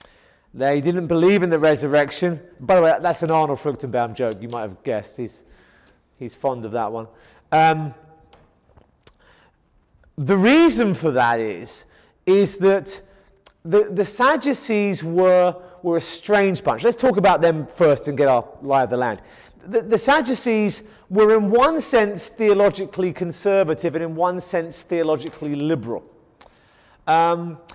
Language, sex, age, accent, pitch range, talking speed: English, male, 30-49, British, 160-210 Hz, 145 wpm